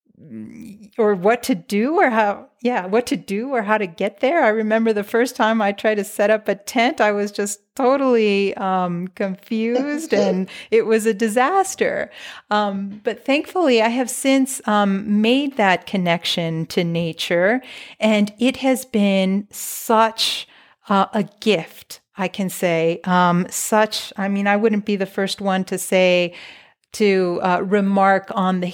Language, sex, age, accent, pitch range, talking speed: English, female, 40-59, American, 185-220 Hz, 165 wpm